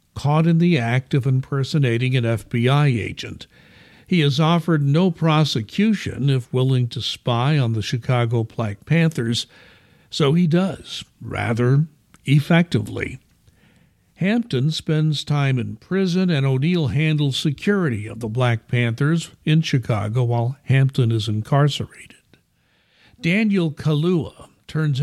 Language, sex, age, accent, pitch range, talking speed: English, male, 60-79, American, 120-155 Hz, 120 wpm